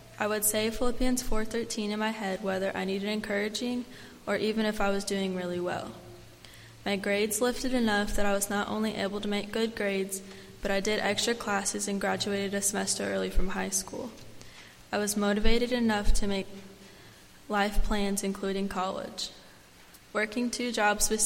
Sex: female